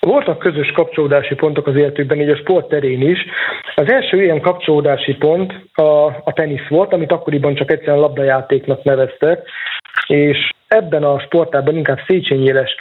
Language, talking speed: Hungarian, 145 wpm